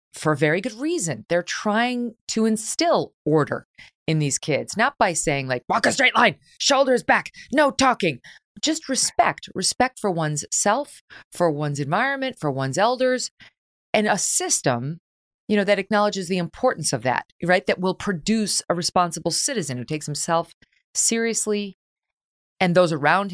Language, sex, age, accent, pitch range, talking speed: English, female, 30-49, American, 165-240 Hz, 160 wpm